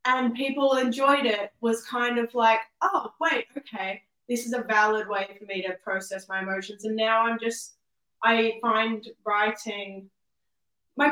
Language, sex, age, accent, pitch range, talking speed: English, female, 10-29, Australian, 190-220 Hz, 160 wpm